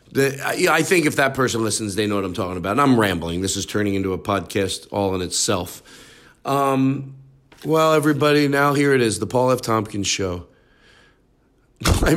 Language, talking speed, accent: English, 180 wpm, American